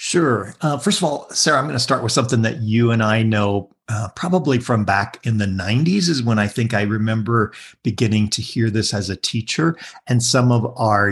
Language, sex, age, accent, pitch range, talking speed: English, male, 50-69, American, 105-135 Hz, 220 wpm